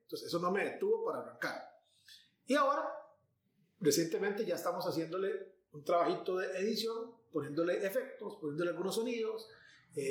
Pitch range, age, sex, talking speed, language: 175-260 Hz, 30-49, male, 135 wpm, Spanish